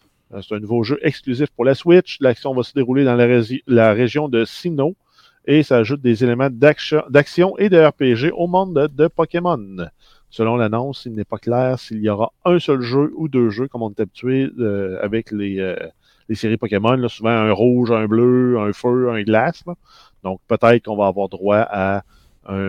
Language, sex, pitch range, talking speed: French, male, 110-145 Hz, 205 wpm